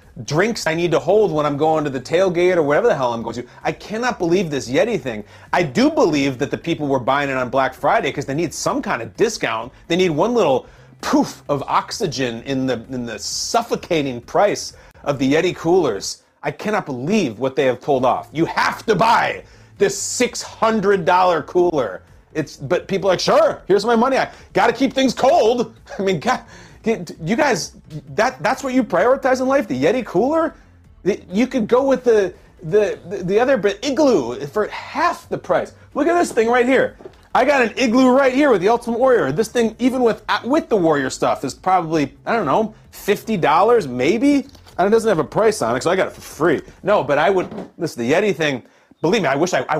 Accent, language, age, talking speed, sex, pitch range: American, English, 30-49, 215 wpm, male, 150-245 Hz